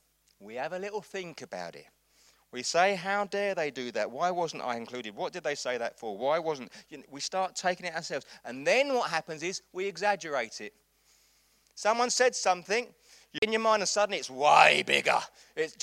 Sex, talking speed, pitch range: male, 195 wpm, 130-205 Hz